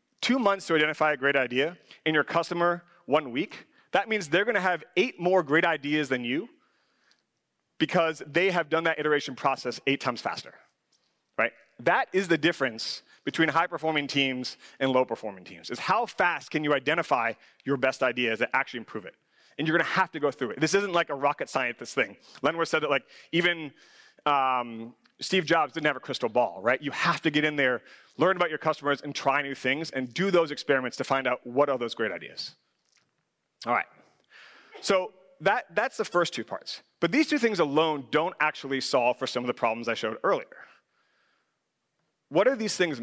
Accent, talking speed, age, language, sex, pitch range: American, 195 wpm, 30-49, English, male, 135-170 Hz